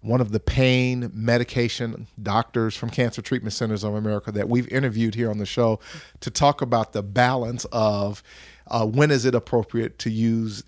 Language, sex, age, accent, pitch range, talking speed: English, male, 40-59, American, 115-130 Hz, 180 wpm